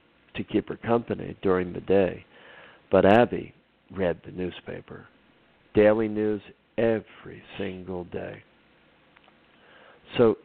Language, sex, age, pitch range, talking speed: English, male, 50-69, 90-110 Hz, 105 wpm